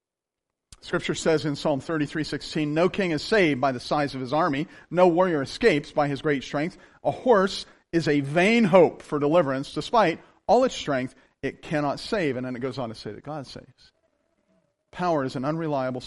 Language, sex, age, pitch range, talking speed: English, male, 40-59, 145-220 Hz, 190 wpm